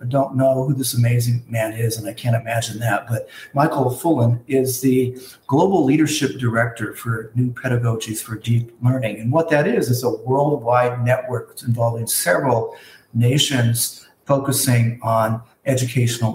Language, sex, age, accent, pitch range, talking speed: English, male, 50-69, American, 115-135 Hz, 150 wpm